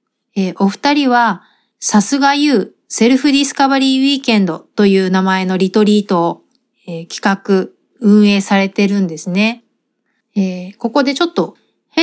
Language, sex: Japanese, female